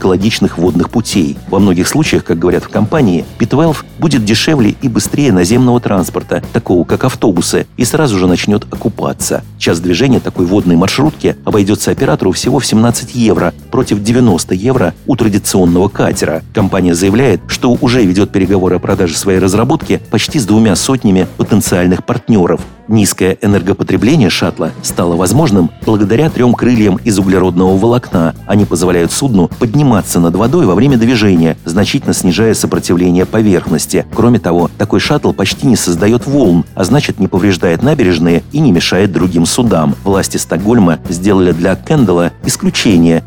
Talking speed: 145 wpm